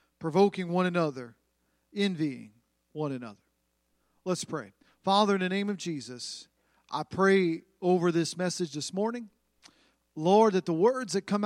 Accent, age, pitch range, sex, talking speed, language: American, 40-59, 150-190 Hz, male, 140 wpm, English